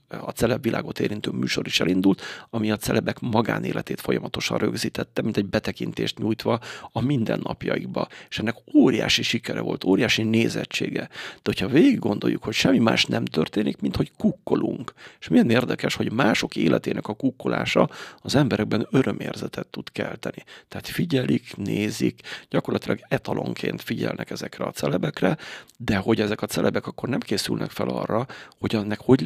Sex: male